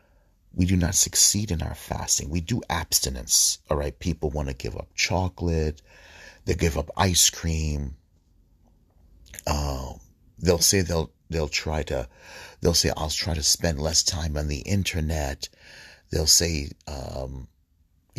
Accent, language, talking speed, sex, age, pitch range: American, English, 145 wpm, male, 30-49, 75-90 Hz